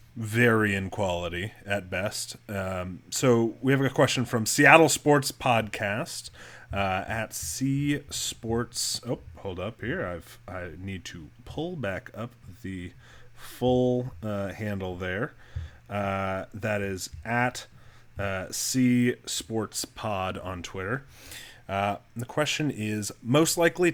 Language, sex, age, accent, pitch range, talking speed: English, male, 30-49, American, 95-125 Hz, 130 wpm